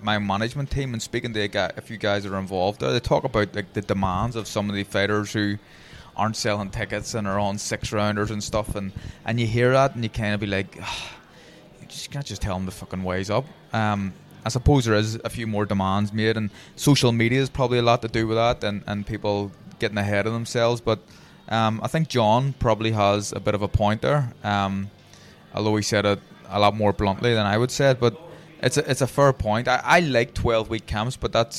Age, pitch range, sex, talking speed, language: 20-39, 100-120 Hz, male, 240 wpm, English